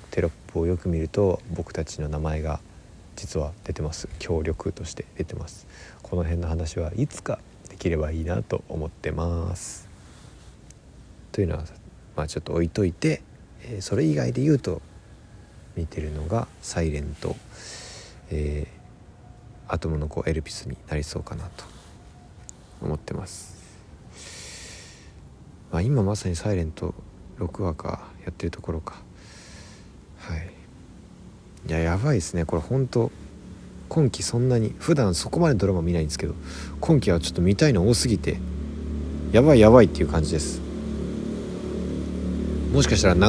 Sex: male